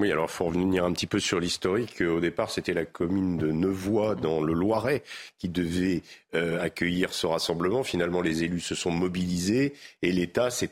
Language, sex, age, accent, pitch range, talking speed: French, male, 50-69, French, 80-100 Hz, 195 wpm